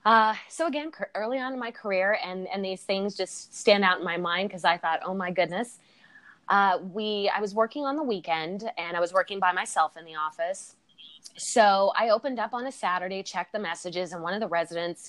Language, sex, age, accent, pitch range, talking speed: English, female, 20-39, American, 170-220 Hz, 225 wpm